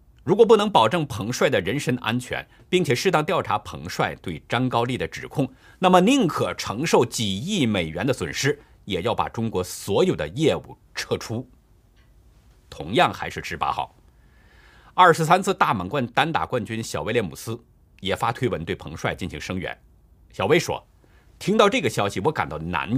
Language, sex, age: Chinese, male, 50-69